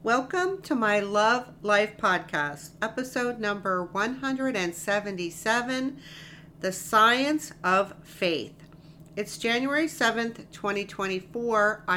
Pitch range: 160-200 Hz